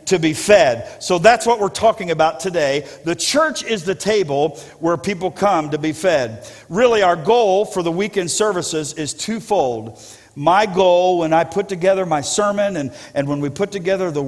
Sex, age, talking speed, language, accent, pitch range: male, 50-69, 200 wpm, English, American, 155-200 Hz